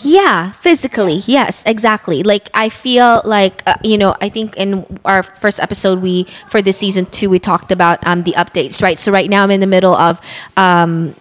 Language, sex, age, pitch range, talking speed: English, female, 20-39, 185-220 Hz, 205 wpm